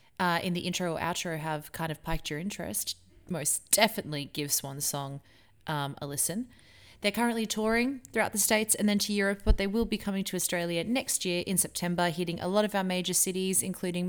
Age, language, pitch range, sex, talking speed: 20-39, English, 165-220 Hz, female, 210 wpm